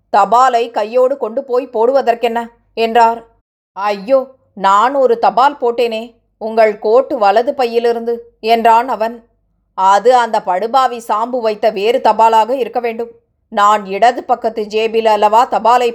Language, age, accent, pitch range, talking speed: Tamil, 20-39, native, 215-245 Hz, 115 wpm